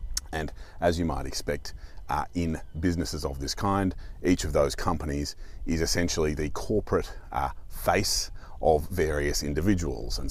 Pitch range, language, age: 75-90 Hz, English, 30-49